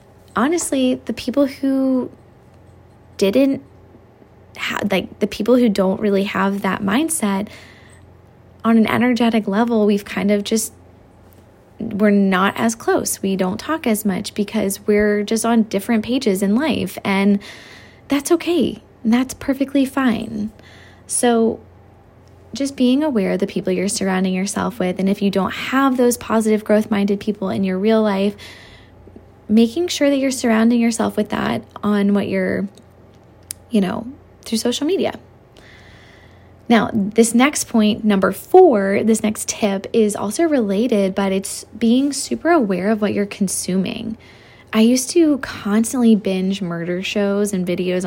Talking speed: 145 wpm